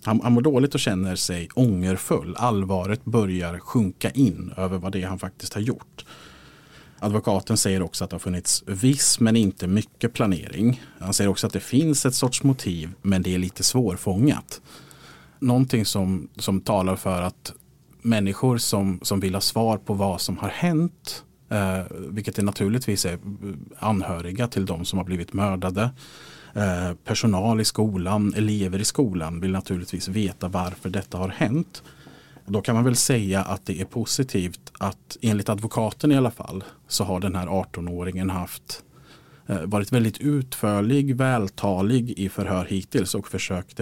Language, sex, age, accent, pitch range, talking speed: Swedish, male, 30-49, Norwegian, 95-120 Hz, 160 wpm